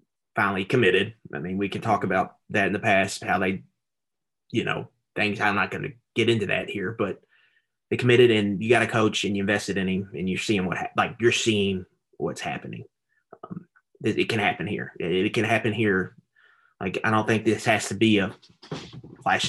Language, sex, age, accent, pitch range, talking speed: English, male, 20-39, American, 105-125 Hz, 210 wpm